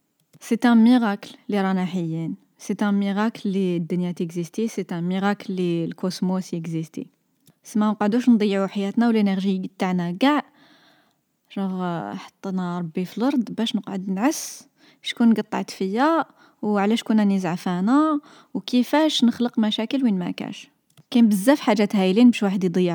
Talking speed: 135 wpm